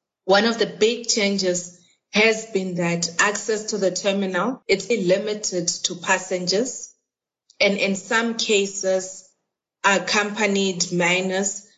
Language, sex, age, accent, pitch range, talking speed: English, female, 30-49, South African, 175-210 Hz, 110 wpm